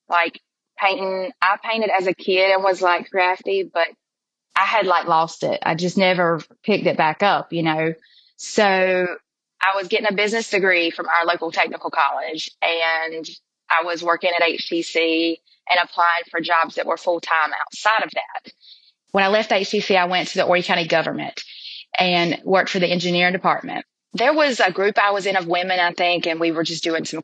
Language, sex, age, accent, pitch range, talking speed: English, female, 20-39, American, 170-195 Hz, 195 wpm